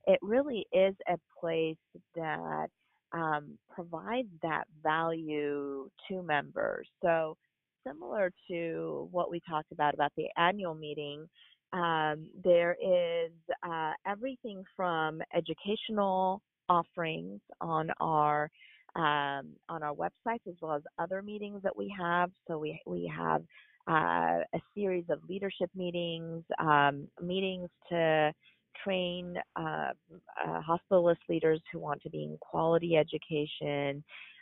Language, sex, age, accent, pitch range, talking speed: English, female, 40-59, American, 150-185 Hz, 120 wpm